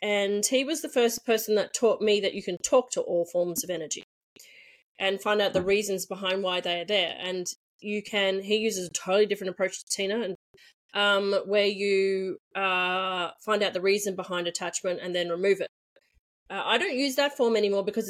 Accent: Australian